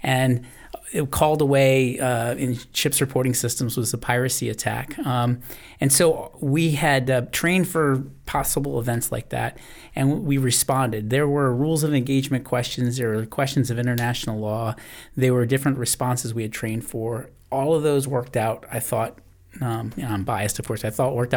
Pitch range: 115-135 Hz